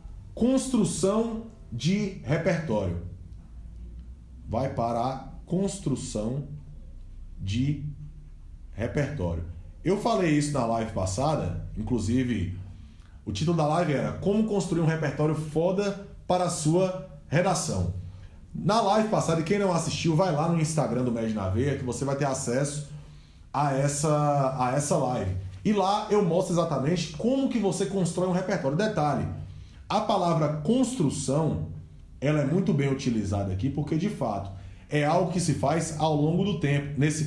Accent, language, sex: Brazilian, Portuguese, male